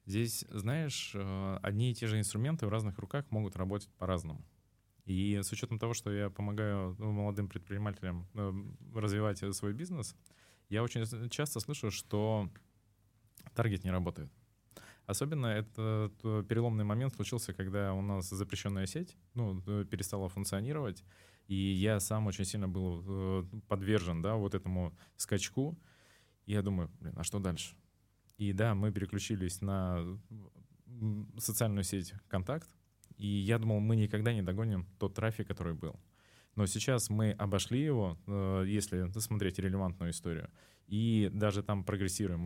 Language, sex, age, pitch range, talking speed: Russian, male, 20-39, 95-110 Hz, 135 wpm